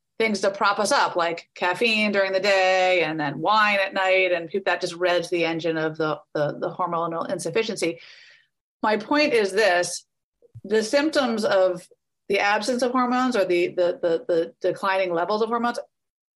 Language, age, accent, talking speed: English, 30-49, American, 160 wpm